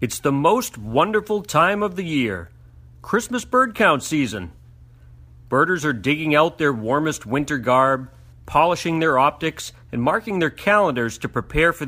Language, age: English, 40-59